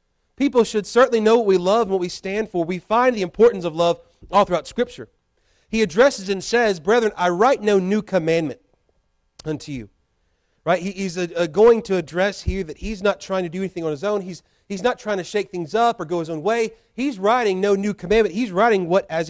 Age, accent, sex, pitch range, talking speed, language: 30-49, American, male, 170-220 Hz, 225 wpm, English